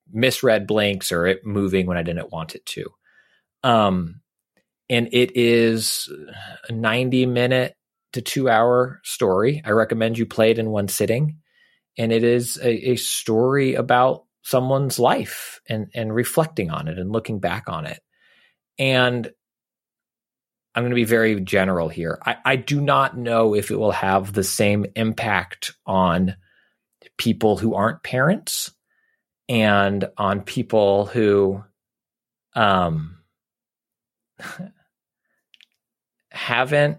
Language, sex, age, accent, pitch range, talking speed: English, male, 30-49, American, 95-125 Hz, 130 wpm